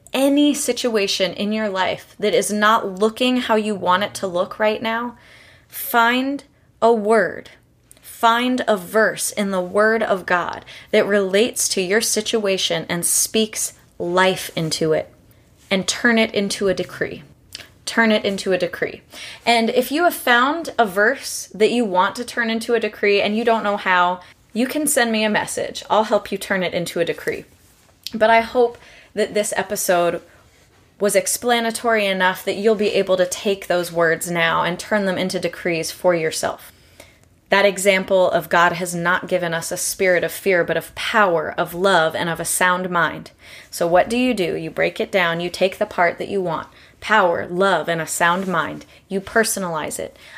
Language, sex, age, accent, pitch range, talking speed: English, female, 20-39, American, 180-225 Hz, 185 wpm